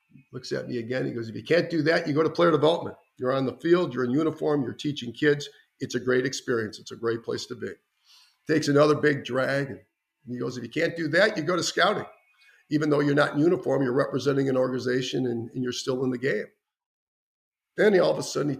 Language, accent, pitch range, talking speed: English, American, 120-150 Hz, 245 wpm